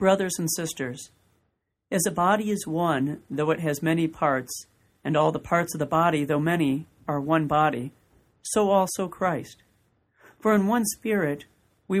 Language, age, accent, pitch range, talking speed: English, 40-59, American, 140-185 Hz, 165 wpm